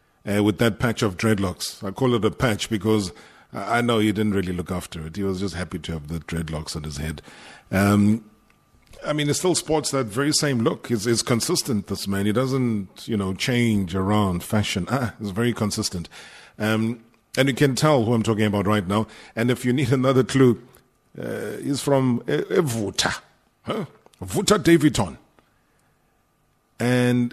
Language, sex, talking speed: English, male, 185 wpm